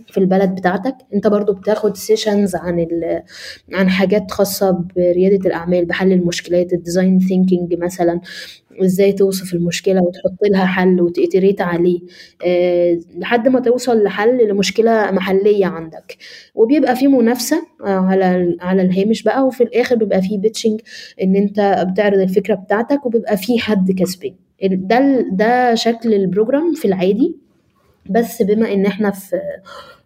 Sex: female